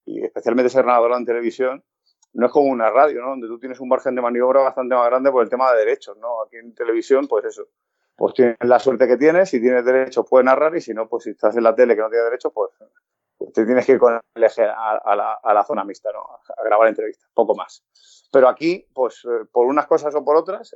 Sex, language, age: male, Spanish, 30-49